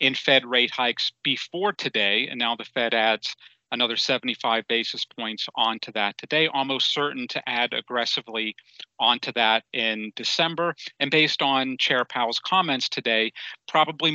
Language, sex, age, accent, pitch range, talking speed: English, male, 40-59, American, 130-180 Hz, 150 wpm